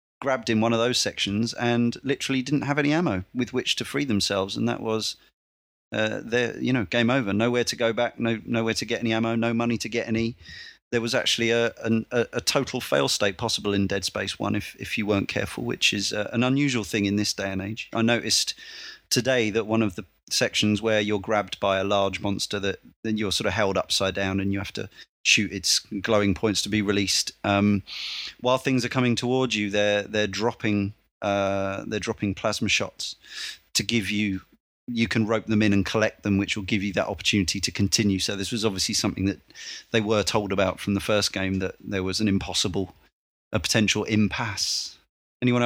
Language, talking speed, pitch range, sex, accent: English, 215 wpm, 100-115 Hz, male, British